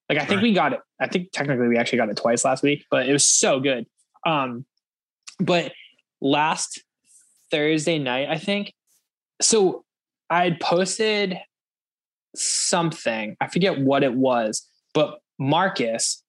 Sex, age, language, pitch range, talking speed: male, 10-29, English, 135-180 Hz, 145 wpm